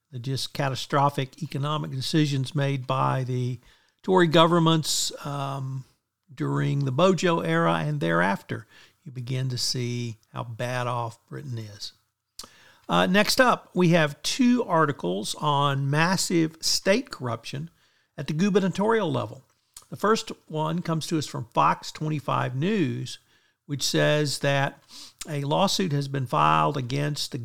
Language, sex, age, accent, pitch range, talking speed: English, male, 50-69, American, 130-165 Hz, 135 wpm